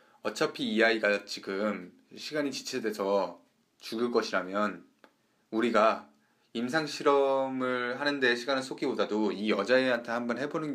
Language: Korean